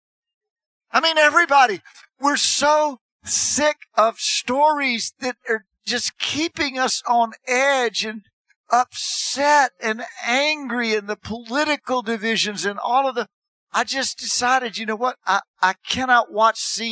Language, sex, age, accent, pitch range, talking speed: English, male, 50-69, American, 210-260 Hz, 135 wpm